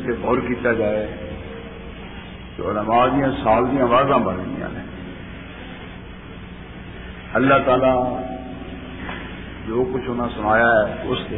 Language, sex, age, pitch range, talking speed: Urdu, male, 50-69, 95-145 Hz, 80 wpm